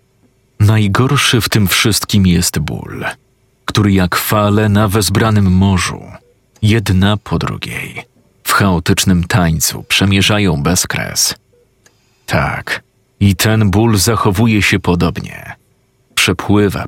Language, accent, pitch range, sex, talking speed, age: Polish, native, 95-120 Hz, male, 105 wpm, 40-59